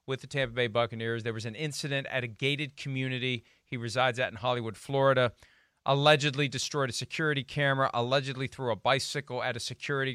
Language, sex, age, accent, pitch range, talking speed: English, male, 40-59, American, 115-135 Hz, 185 wpm